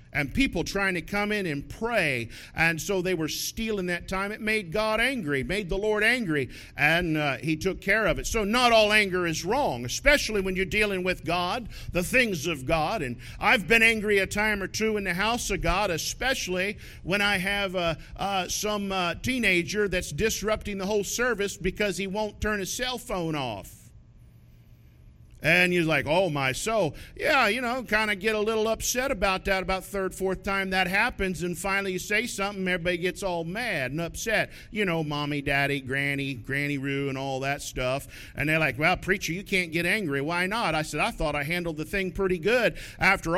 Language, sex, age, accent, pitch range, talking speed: English, male, 50-69, American, 155-215 Hz, 205 wpm